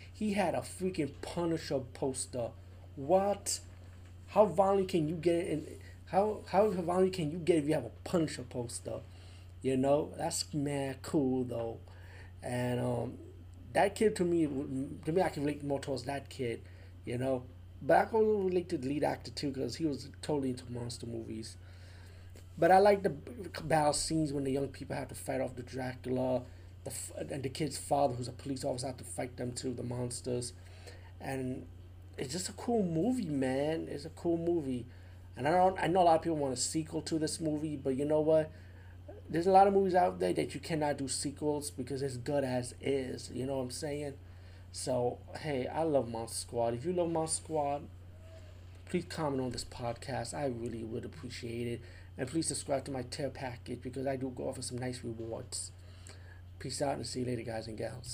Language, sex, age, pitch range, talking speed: English, male, 30-49, 95-150 Hz, 200 wpm